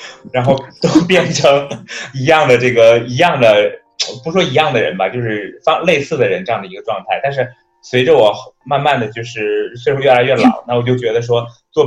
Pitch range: 110-145 Hz